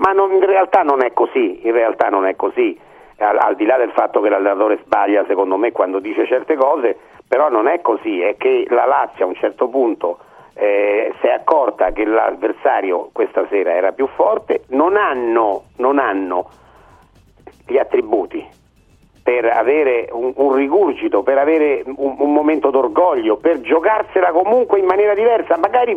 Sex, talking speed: male, 165 wpm